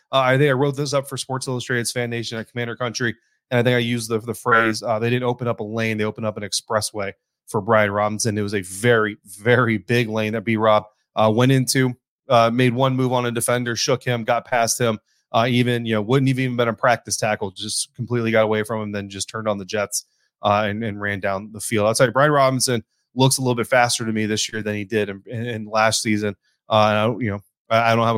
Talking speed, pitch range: 255 wpm, 110-125 Hz